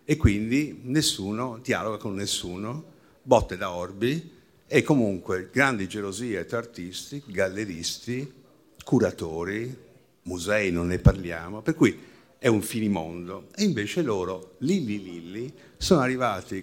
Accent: native